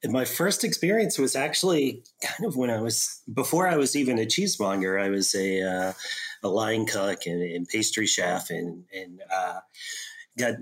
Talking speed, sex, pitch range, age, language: 180 wpm, male, 100-130 Hz, 30-49, English